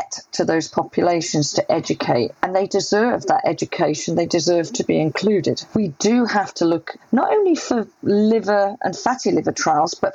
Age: 40-59